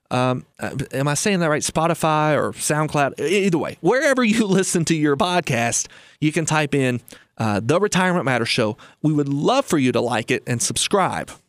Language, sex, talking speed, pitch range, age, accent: English, male, 190 wpm, 135-190 Hz, 30-49, American